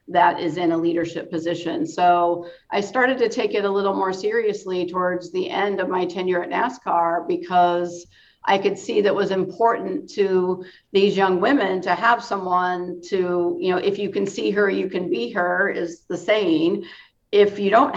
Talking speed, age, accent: 190 wpm, 50-69, American